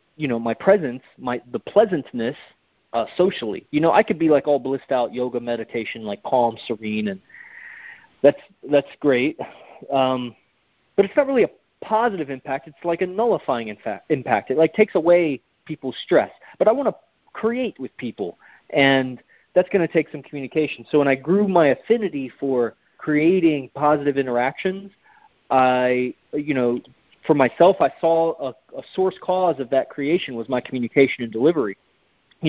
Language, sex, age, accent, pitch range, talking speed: English, male, 30-49, American, 125-170 Hz, 170 wpm